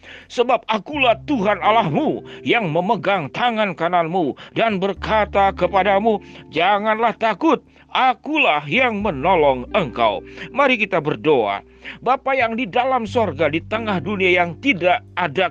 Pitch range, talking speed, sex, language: 150-220 Hz, 120 wpm, male, Indonesian